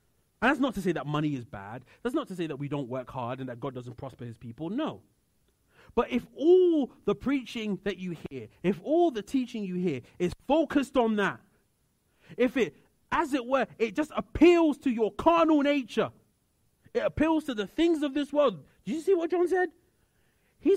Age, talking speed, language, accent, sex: 30-49, 205 wpm, English, British, male